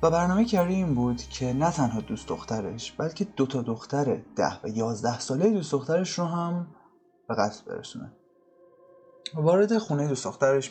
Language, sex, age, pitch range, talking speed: Persian, male, 20-39, 120-180 Hz, 155 wpm